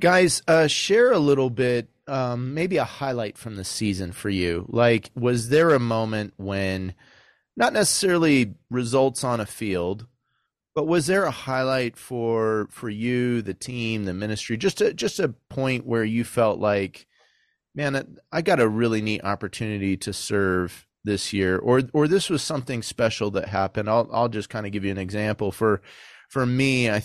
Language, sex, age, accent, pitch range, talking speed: English, male, 30-49, American, 100-125 Hz, 175 wpm